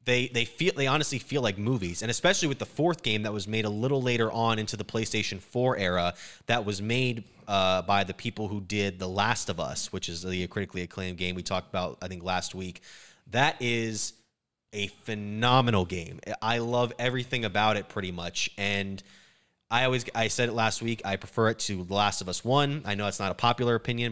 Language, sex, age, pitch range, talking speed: English, male, 20-39, 100-120 Hz, 220 wpm